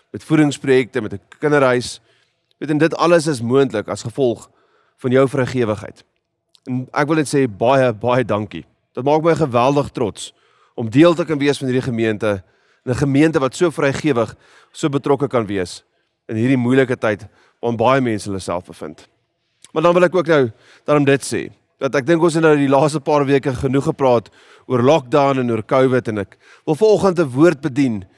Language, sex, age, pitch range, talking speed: English, male, 30-49, 120-160 Hz, 190 wpm